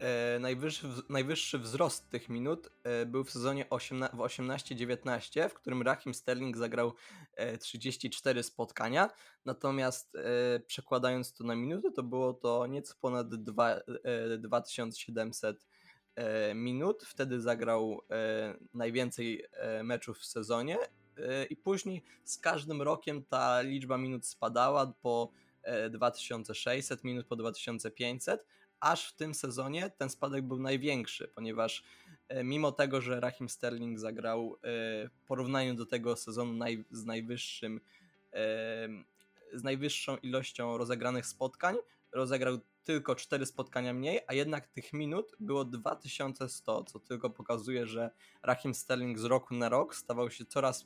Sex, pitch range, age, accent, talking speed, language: male, 115-135 Hz, 20-39, native, 120 wpm, Polish